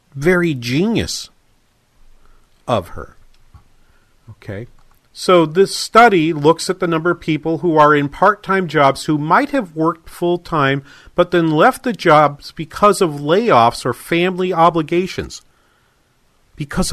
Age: 50-69